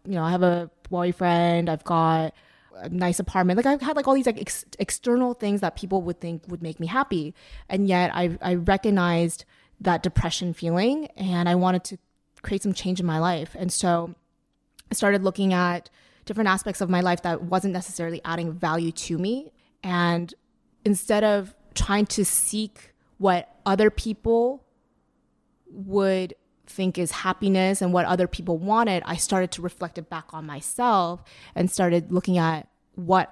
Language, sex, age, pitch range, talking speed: English, female, 20-39, 165-195 Hz, 175 wpm